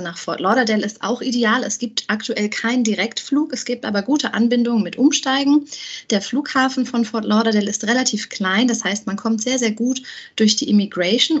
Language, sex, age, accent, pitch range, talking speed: German, female, 20-39, German, 200-245 Hz, 190 wpm